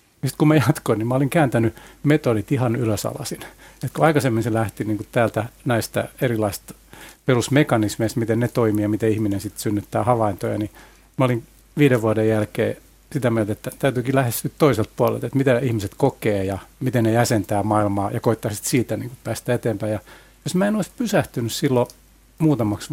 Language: Finnish